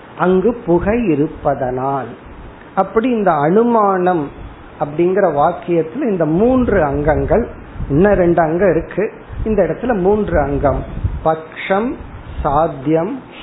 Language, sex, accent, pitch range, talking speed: Tamil, male, native, 150-195 Hz, 55 wpm